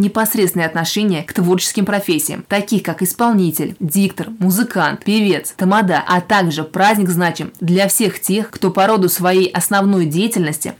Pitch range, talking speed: 180-195 Hz, 140 wpm